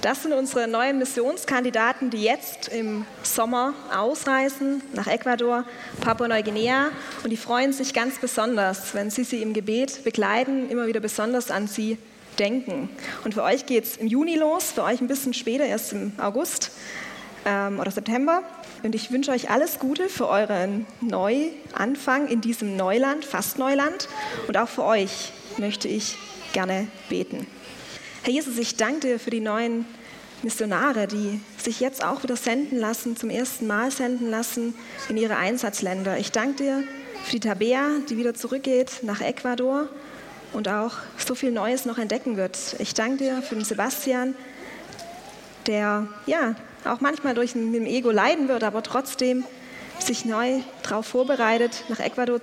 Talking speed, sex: 160 wpm, female